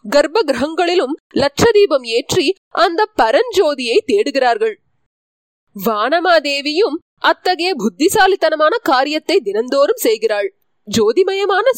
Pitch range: 270-430 Hz